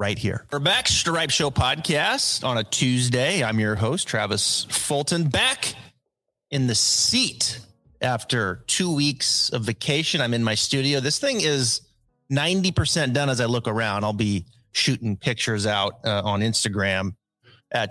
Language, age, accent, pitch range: English, 30-49, American, 110-140 Hz